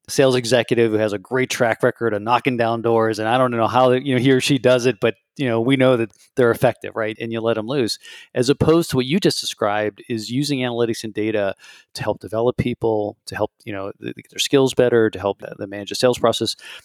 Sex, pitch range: male, 110-130 Hz